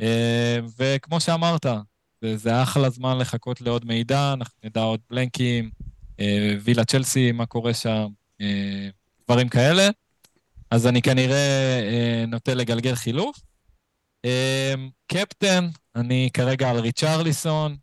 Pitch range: 115-140 Hz